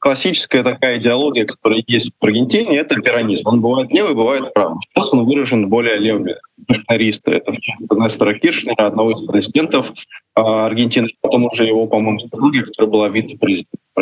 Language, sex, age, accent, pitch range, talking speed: Russian, male, 20-39, native, 110-140 Hz, 160 wpm